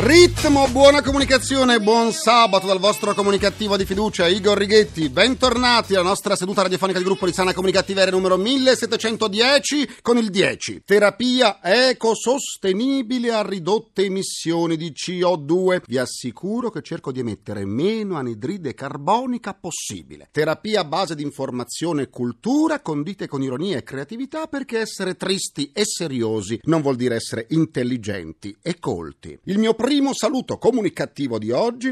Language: Italian